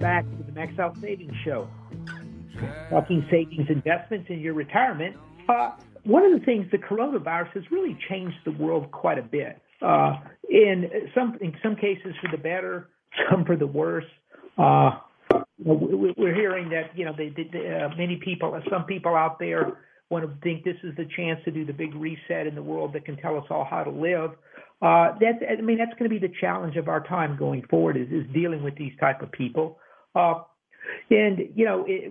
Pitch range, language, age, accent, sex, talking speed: 150-180 Hz, English, 50-69, American, male, 205 wpm